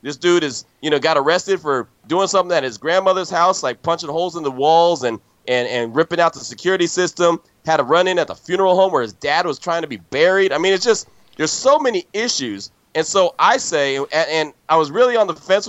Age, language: 30-49, English